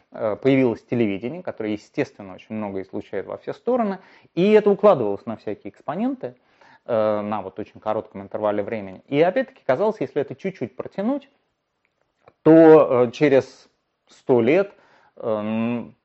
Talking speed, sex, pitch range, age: 135 wpm, male, 105-135 Hz, 30-49